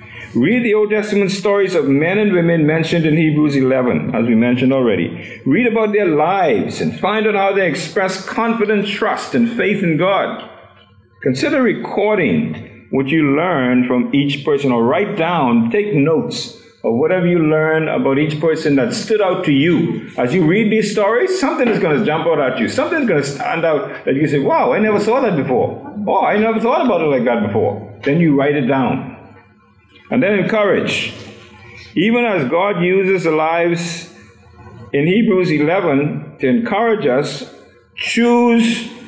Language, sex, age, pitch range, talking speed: English, male, 50-69, 135-205 Hz, 180 wpm